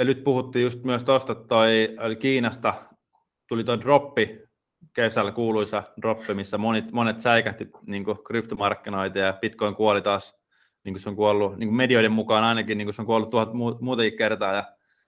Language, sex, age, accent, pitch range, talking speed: Finnish, male, 20-39, native, 105-120 Hz, 150 wpm